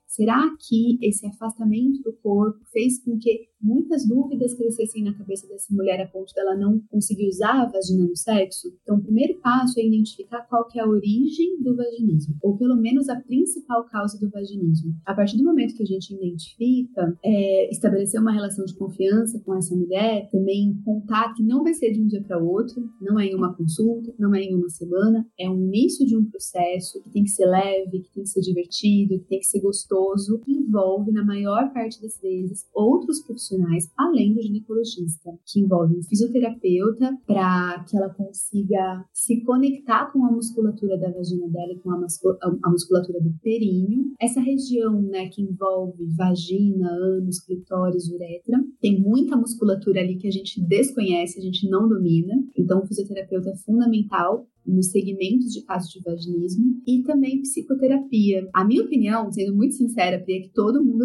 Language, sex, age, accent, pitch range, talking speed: Portuguese, female, 30-49, Brazilian, 185-230 Hz, 185 wpm